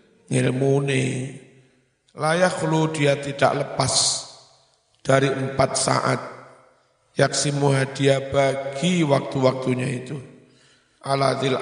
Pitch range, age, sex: 125-140 Hz, 50-69, male